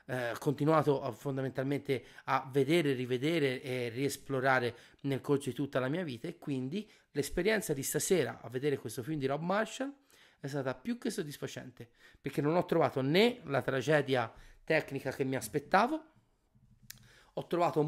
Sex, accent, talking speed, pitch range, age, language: male, native, 150 wpm, 130-170 Hz, 30-49, Italian